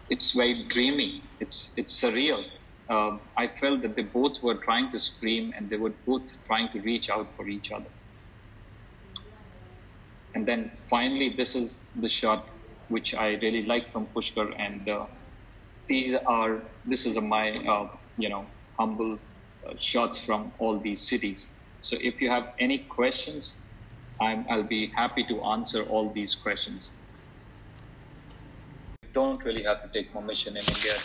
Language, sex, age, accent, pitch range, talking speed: Indonesian, male, 30-49, Indian, 105-120 Hz, 155 wpm